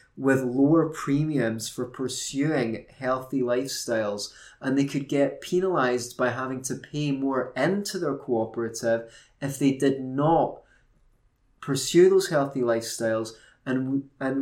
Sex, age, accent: male, 30-49, British